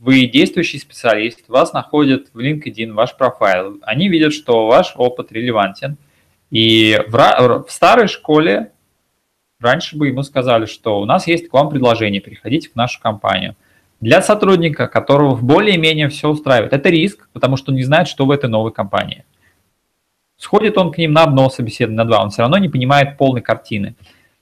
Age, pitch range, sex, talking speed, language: 20-39, 115-155 Hz, male, 165 wpm, Russian